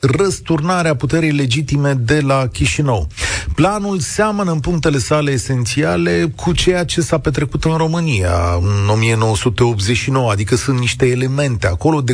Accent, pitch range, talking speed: native, 120-175 Hz, 135 wpm